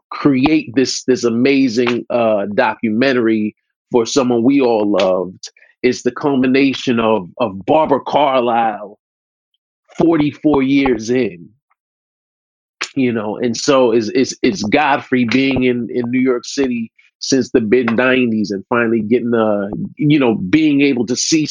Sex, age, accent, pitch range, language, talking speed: male, 40-59, American, 120-165 Hz, English, 135 wpm